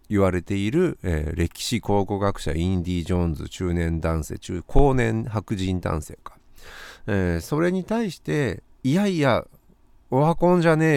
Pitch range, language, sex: 90-135 Hz, Japanese, male